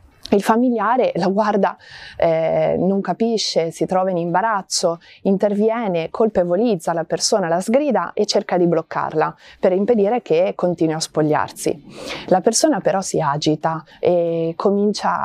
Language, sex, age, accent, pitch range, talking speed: Italian, female, 30-49, native, 165-220 Hz, 135 wpm